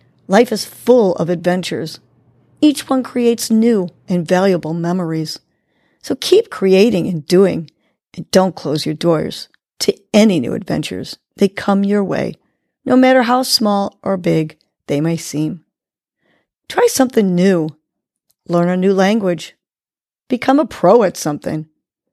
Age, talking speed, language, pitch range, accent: 40-59, 140 wpm, English, 170-225 Hz, American